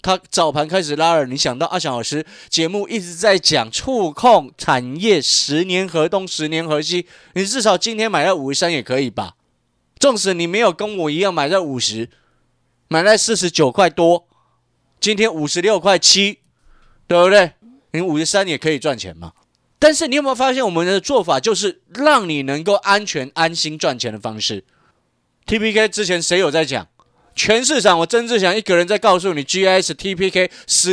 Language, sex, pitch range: Chinese, male, 155-215 Hz